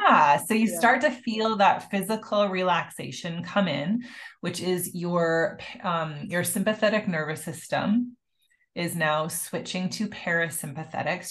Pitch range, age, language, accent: 165-210 Hz, 30-49, English, American